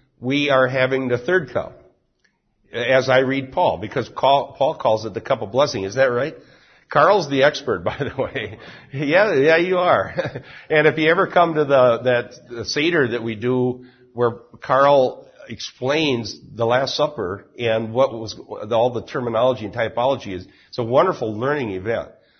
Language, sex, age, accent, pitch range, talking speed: English, male, 60-79, American, 125-150 Hz, 170 wpm